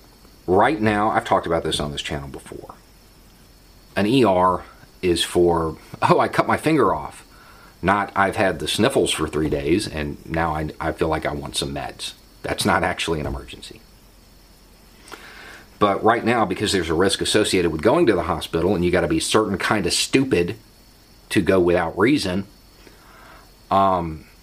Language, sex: English, male